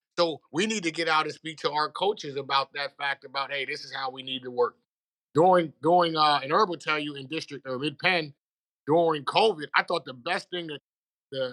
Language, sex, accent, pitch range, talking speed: English, male, American, 150-185 Hz, 230 wpm